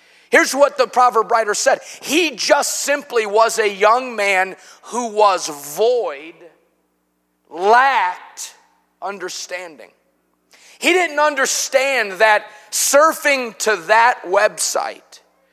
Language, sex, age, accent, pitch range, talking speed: English, male, 30-49, American, 195-265 Hz, 100 wpm